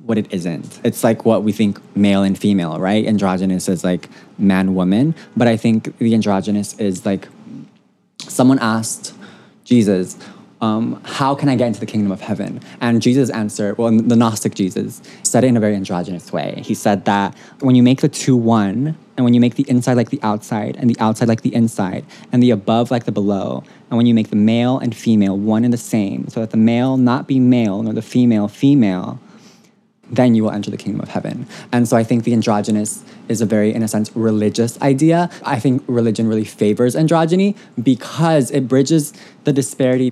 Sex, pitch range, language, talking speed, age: male, 105-125 Hz, English, 205 wpm, 20-39